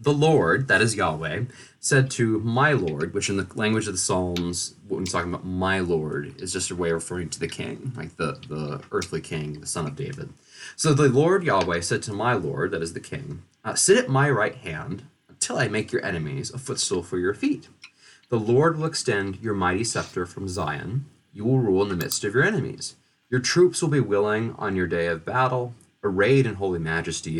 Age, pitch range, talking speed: 30-49, 90-135 Hz, 220 wpm